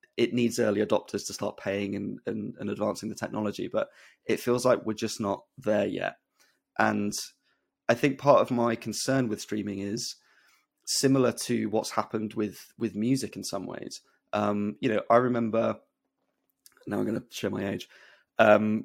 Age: 20-39